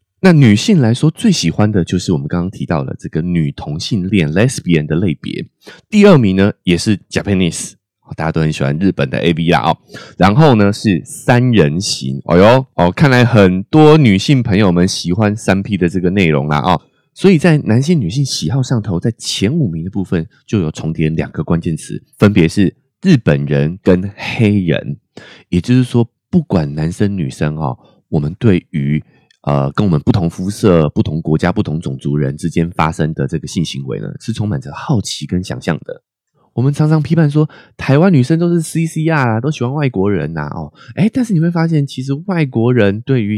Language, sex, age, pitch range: Chinese, male, 20-39, 85-135 Hz